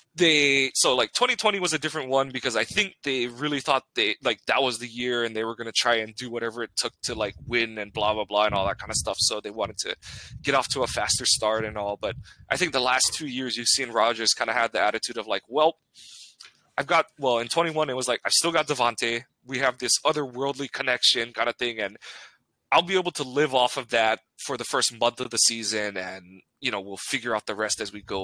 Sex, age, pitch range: male, 20-39, 110-135 Hz